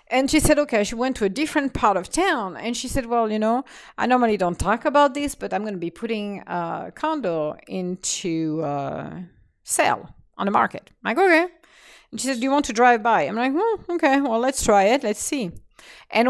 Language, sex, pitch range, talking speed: English, female, 175-245 Hz, 225 wpm